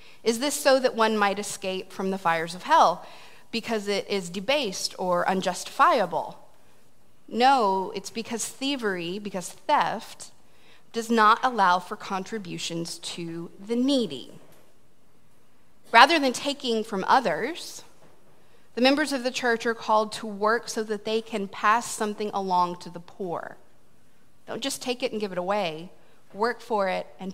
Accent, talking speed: American, 150 wpm